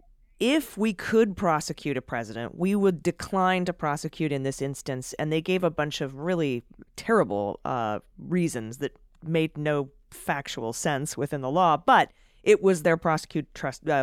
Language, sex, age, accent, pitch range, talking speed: English, female, 30-49, American, 135-175 Hz, 165 wpm